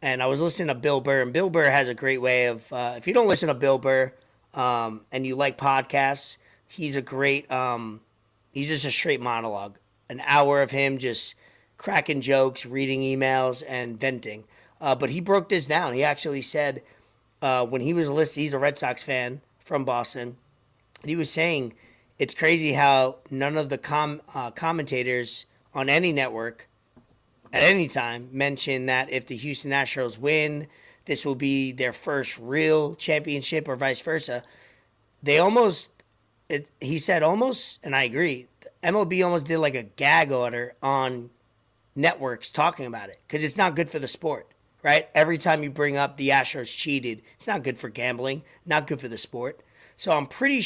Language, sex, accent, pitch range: English, male, American, 125-150 Hz